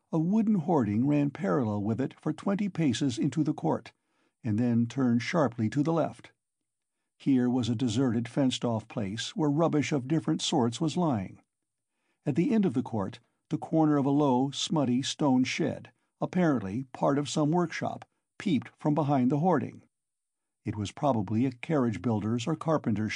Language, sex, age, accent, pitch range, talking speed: English, male, 50-69, American, 120-155 Hz, 165 wpm